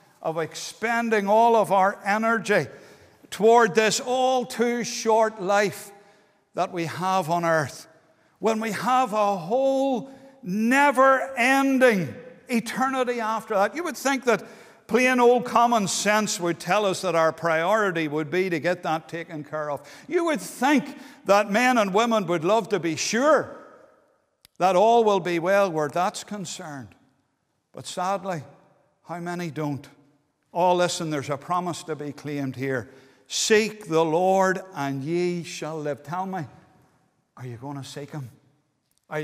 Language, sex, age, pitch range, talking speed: English, male, 60-79, 150-210 Hz, 145 wpm